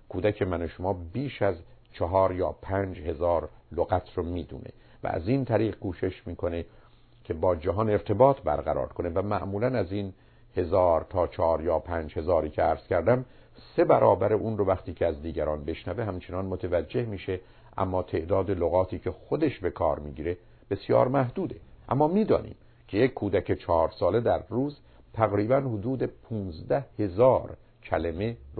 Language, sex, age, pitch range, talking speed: Persian, male, 50-69, 90-115 Hz, 150 wpm